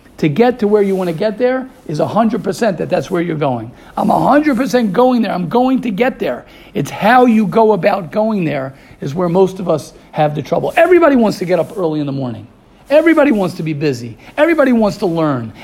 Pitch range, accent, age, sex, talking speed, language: 175-225 Hz, American, 50-69, male, 225 wpm, English